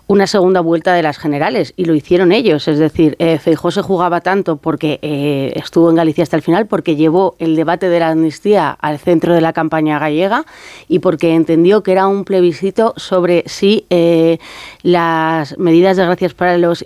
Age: 30-49